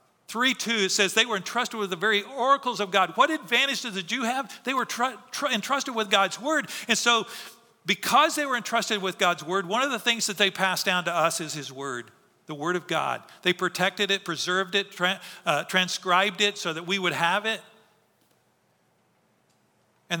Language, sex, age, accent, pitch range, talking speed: English, male, 50-69, American, 160-210 Hz, 205 wpm